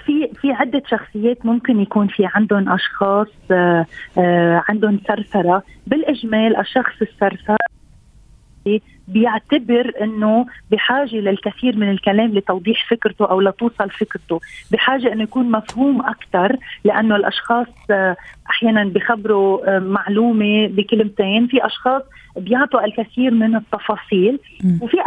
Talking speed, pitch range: 105 wpm, 200-235 Hz